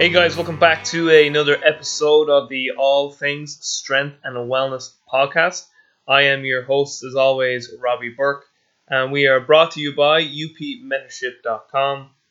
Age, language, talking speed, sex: 20-39, English, 150 wpm, male